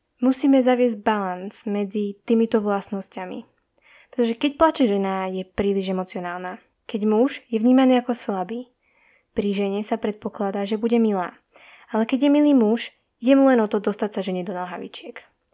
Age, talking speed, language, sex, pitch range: 10-29, 160 wpm, Slovak, female, 200-240 Hz